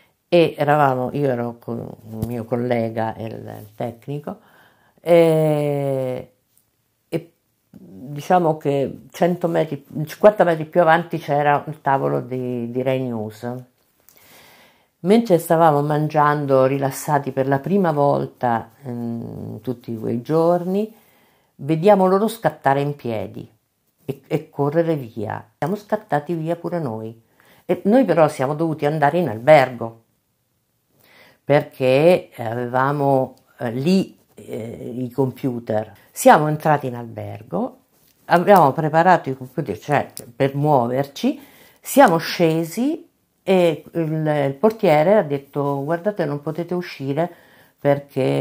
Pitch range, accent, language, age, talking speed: 125-170 Hz, native, Italian, 50-69, 110 wpm